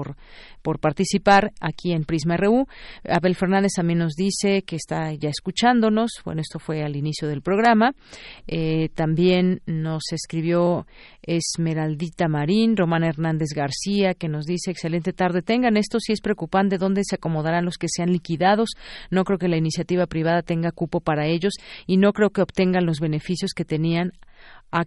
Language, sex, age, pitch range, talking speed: Spanish, female, 40-59, 160-190 Hz, 165 wpm